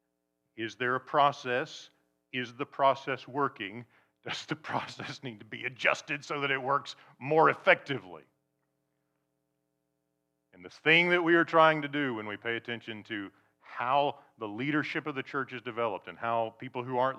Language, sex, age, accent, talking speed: English, male, 40-59, American, 170 wpm